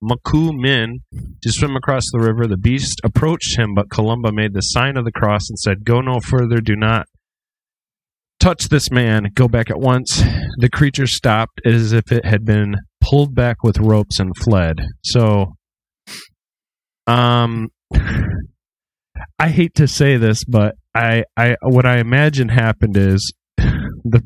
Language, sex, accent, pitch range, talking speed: English, male, American, 105-125 Hz, 155 wpm